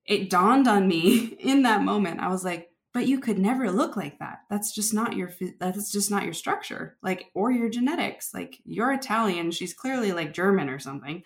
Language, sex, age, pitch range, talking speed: English, female, 20-39, 170-220 Hz, 210 wpm